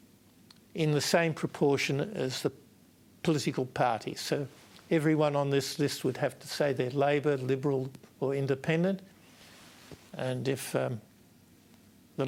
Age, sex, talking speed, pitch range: 60-79, male, 125 wpm, 135-160 Hz